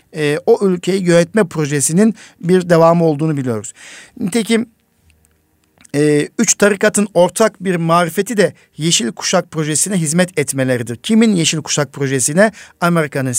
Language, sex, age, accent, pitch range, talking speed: Turkish, male, 50-69, native, 140-185 Hz, 110 wpm